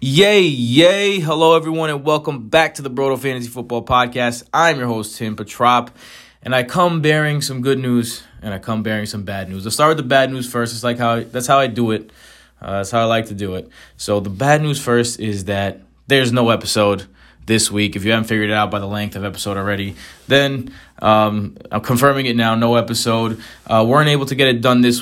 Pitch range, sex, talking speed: 105-135 Hz, male, 230 wpm